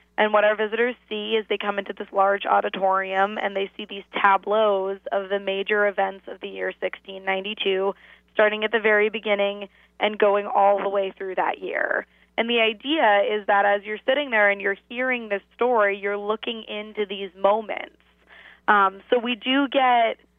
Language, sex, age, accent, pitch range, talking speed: English, female, 20-39, American, 200-225 Hz, 180 wpm